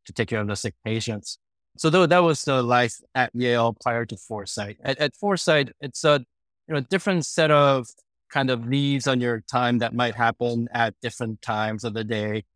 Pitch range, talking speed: 110-125 Hz, 205 wpm